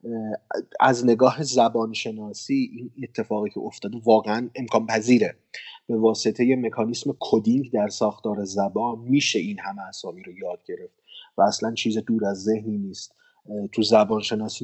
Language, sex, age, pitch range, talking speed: Persian, male, 30-49, 105-140 Hz, 135 wpm